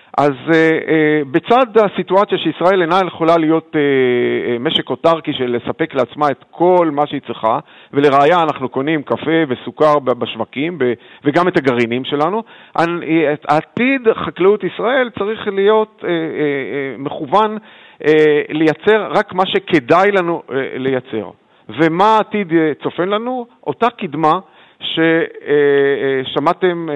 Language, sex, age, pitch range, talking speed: Hebrew, male, 40-59, 145-200 Hz, 125 wpm